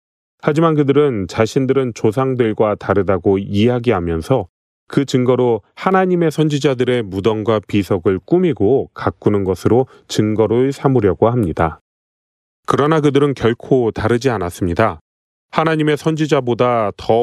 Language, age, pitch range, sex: Korean, 30-49, 100-140 Hz, male